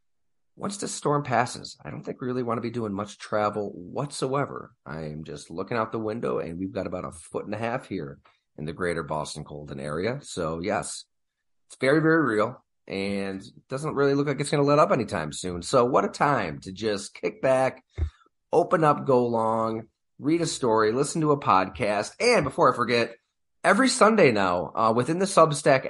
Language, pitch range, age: English, 100-135 Hz, 30-49